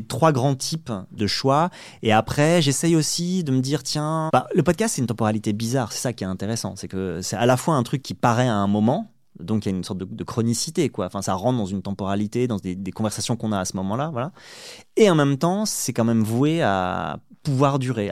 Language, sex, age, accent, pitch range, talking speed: French, male, 30-49, French, 110-145 Hz, 250 wpm